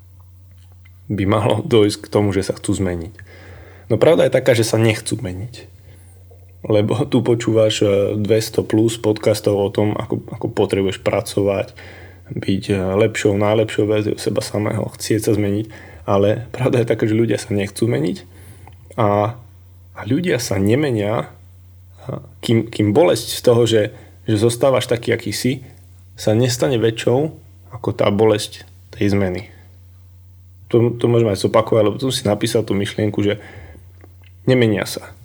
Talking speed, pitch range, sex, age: 145 wpm, 95-110 Hz, male, 20-39